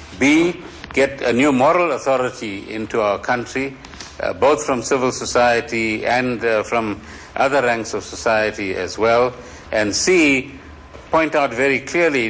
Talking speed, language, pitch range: 140 wpm, English, 120-180 Hz